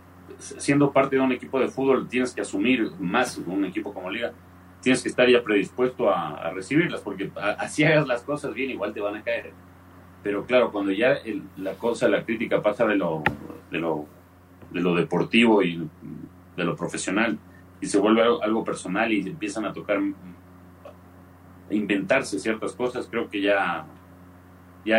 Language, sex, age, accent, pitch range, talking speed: Spanish, male, 40-59, Mexican, 90-115 Hz, 175 wpm